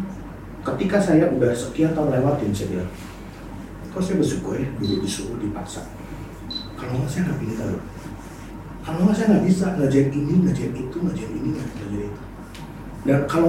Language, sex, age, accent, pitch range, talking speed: Indonesian, male, 40-59, native, 110-160 Hz, 170 wpm